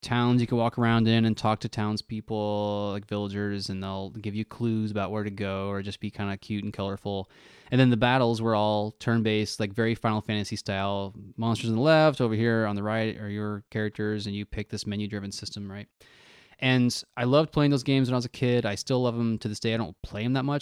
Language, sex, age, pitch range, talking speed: English, male, 20-39, 105-130 Hz, 245 wpm